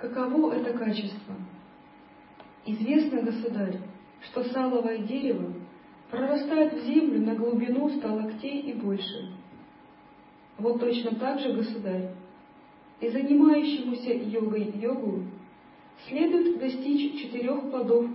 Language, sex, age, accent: Russian, female, 40-59, native